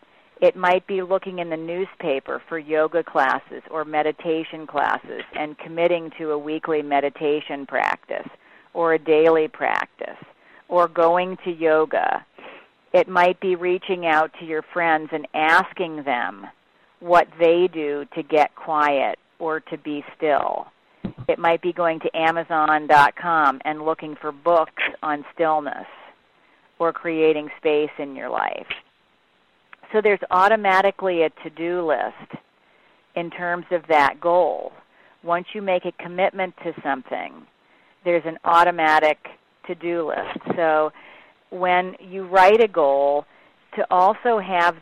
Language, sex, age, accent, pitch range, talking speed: English, female, 40-59, American, 155-180 Hz, 135 wpm